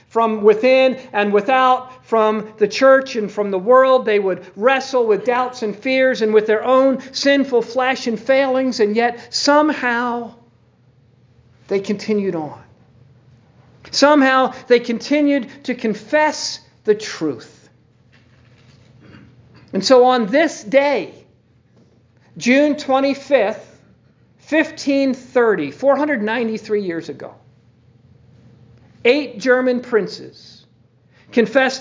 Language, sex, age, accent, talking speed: English, male, 50-69, American, 100 wpm